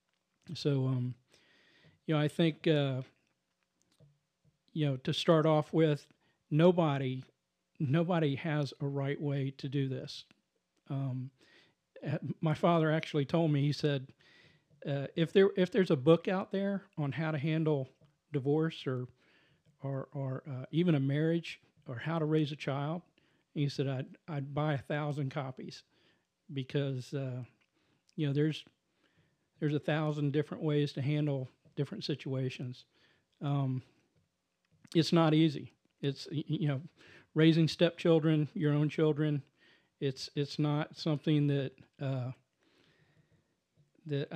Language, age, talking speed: English, 50-69, 135 wpm